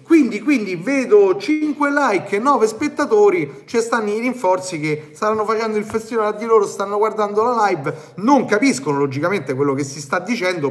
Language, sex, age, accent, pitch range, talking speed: Italian, male, 30-49, native, 150-230 Hz, 185 wpm